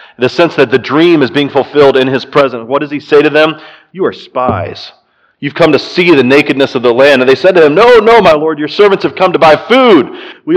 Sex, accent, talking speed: male, American, 265 wpm